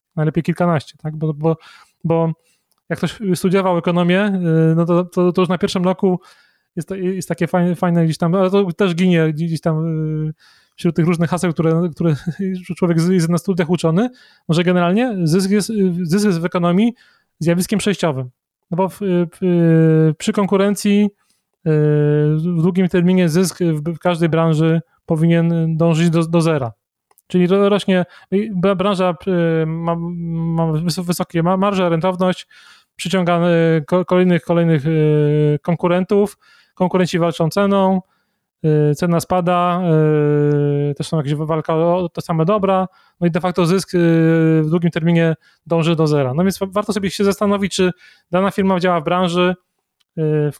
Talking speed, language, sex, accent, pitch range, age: 145 wpm, Polish, male, native, 165-185 Hz, 30-49